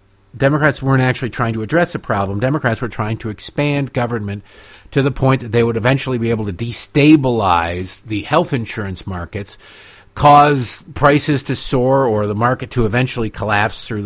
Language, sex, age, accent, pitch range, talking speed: English, male, 50-69, American, 100-135 Hz, 170 wpm